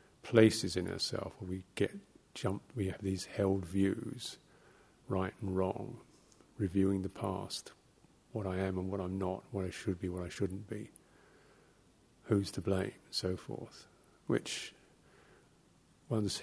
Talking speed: 150 wpm